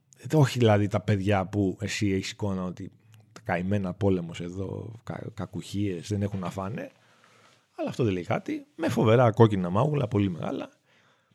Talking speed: 145 wpm